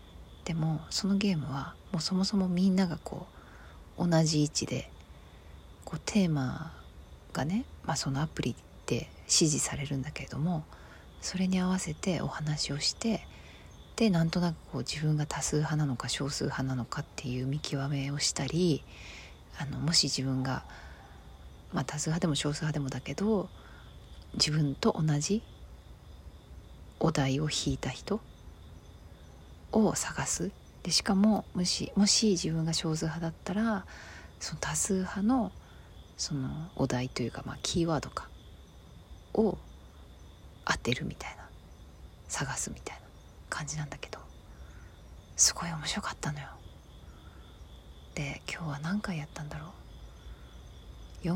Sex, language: female, Japanese